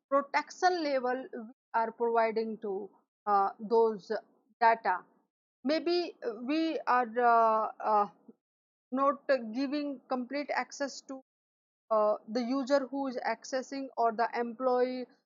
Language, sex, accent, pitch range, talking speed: English, female, Indian, 230-280 Hz, 105 wpm